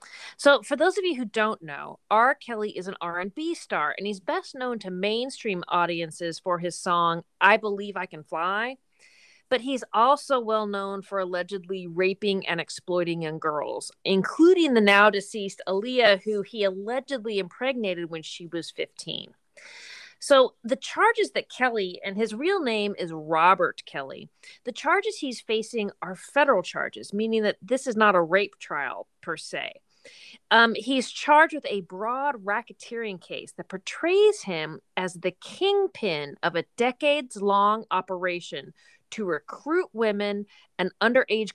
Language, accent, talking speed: English, American, 155 wpm